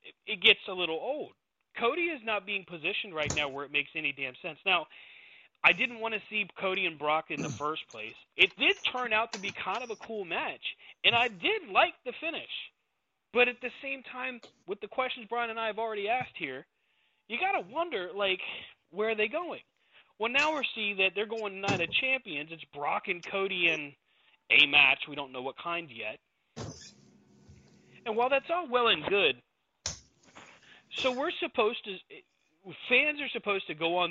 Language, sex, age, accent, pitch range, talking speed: English, male, 30-49, American, 150-240 Hz, 195 wpm